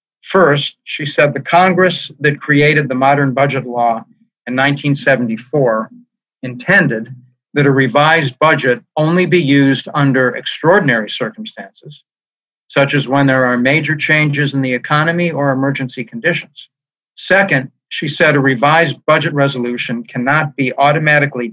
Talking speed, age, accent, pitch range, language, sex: 130 wpm, 50-69, American, 130-155 Hz, English, male